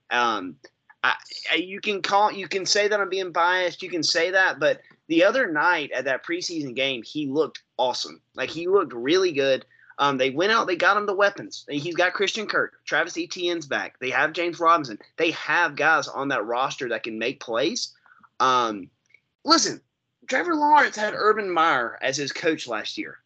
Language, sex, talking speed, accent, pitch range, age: English, male, 190 wpm, American, 150-205 Hz, 30-49